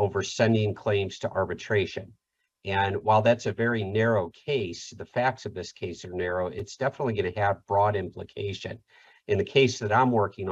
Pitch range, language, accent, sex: 95-110 Hz, English, American, male